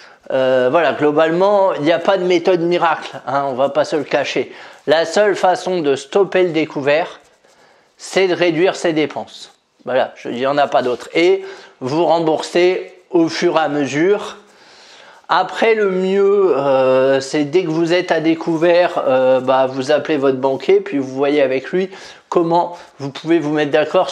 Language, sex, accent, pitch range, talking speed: French, male, French, 130-175 Hz, 180 wpm